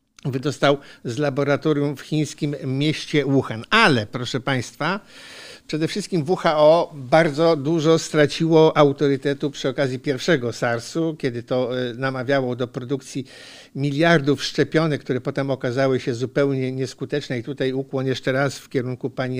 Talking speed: 130 wpm